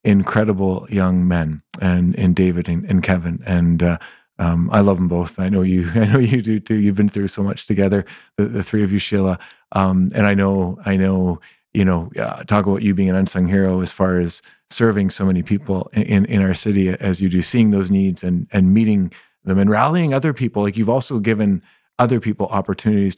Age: 30-49